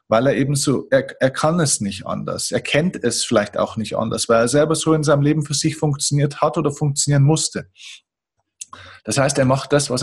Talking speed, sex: 220 wpm, male